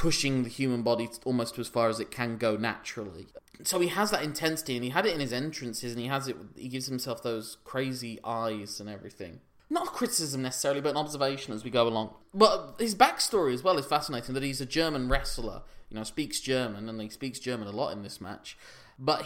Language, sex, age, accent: English, male, 20-39, British